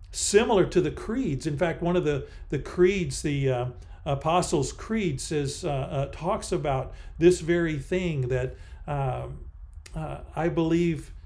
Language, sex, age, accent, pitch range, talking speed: English, male, 50-69, American, 130-190 Hz, 150 wpm